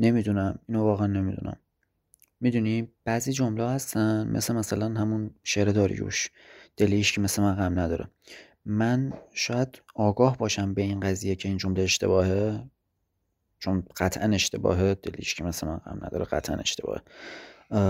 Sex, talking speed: male, 135 wpm